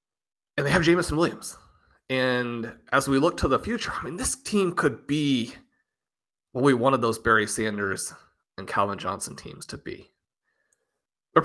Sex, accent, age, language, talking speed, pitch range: male, American, 30-49, English, 170 wpm, 115-150 Hz